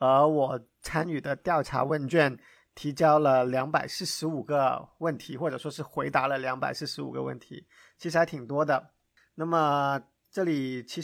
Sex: male